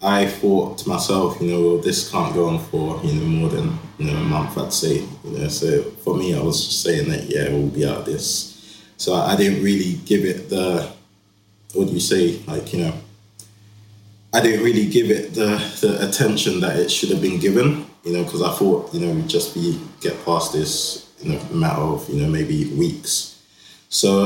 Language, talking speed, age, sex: English, 215 wpm, 20-39, male